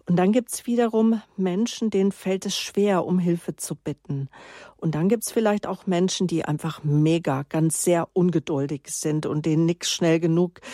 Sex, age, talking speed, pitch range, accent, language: female, 50-69, 185 wpm, 160-195 Hz, German, German